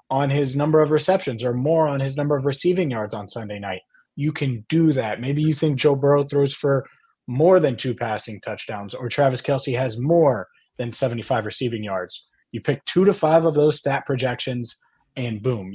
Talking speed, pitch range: 200 wpm, 120-150 Hz